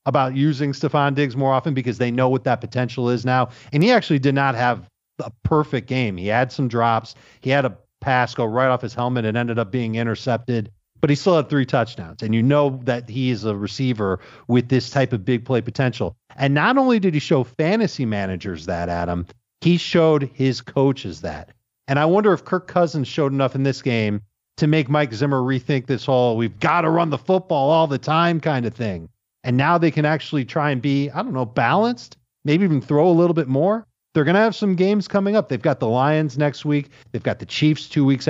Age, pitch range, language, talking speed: 40-59, 120-150 Hz, English, 230 wpm